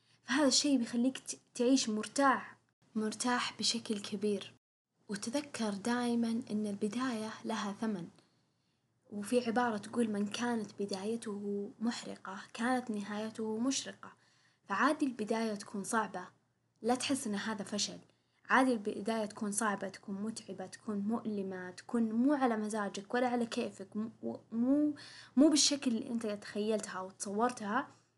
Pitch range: 205-245 Hz